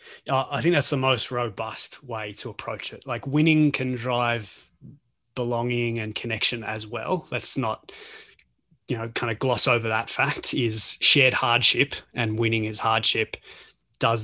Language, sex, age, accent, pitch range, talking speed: English, male, 20-39, Australian, 115-135 Hz, 155 wpm